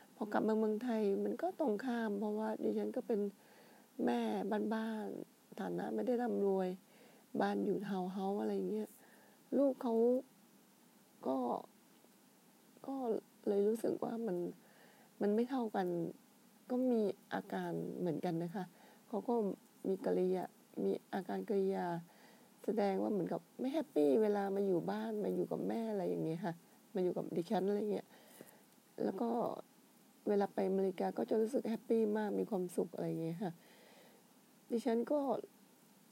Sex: female